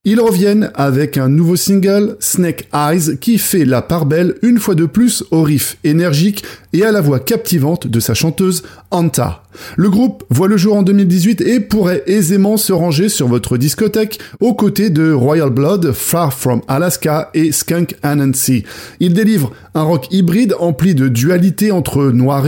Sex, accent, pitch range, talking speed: male, French, 145-195 Hz, 175 wpm